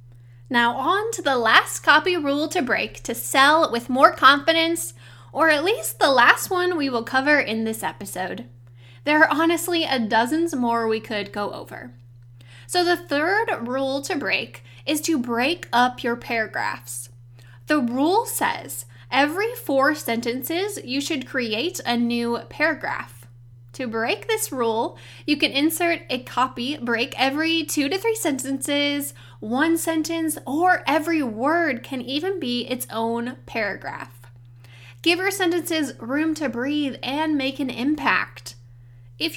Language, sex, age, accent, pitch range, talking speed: English, female, 10-29, American, 220-310 Hz, 150 wpm